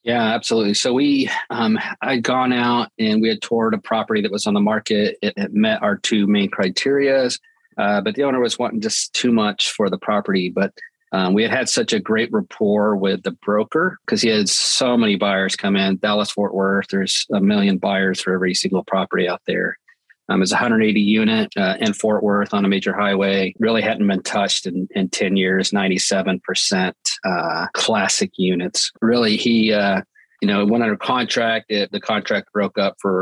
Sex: male